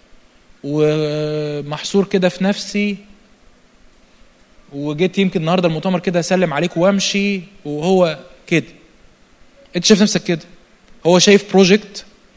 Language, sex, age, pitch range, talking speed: Arabic, male, 20-39, 175-230 Hz, 100 wpm